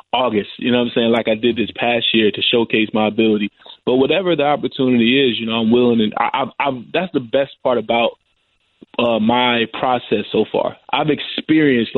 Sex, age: male, 20-39